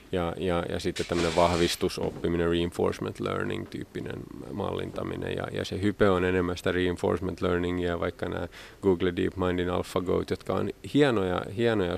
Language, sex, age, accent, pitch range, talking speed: Finnish, male, 30-49, native, 85-100 Hz, 140 wpm